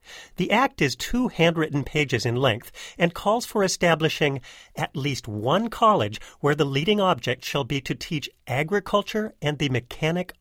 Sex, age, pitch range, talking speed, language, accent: male, 40-59, 130-200 Hz, 160 wpm, English, American